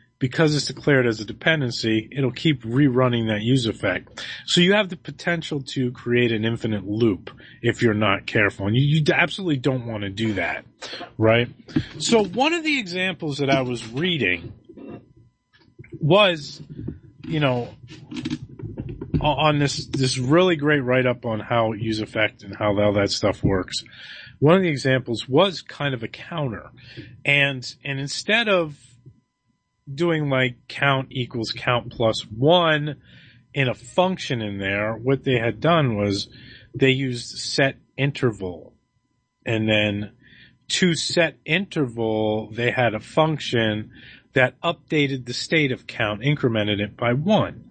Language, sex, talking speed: English, male, 150 wpm